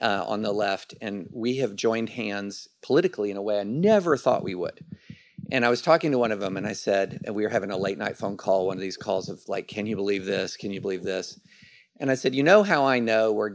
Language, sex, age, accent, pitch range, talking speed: English, male, 40-59, American, 105-140 Hz, 265 wpm